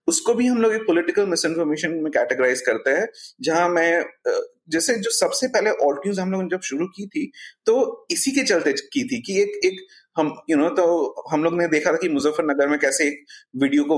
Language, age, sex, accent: Hindi, 30-49, male, native